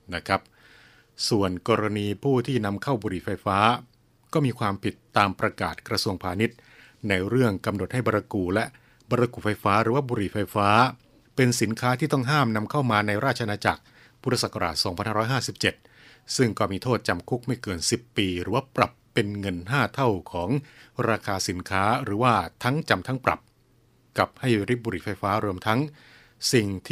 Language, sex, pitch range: Thai, male, 100-125 Hz